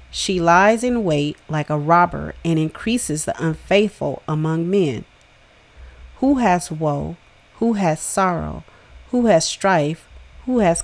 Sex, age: female, 40-59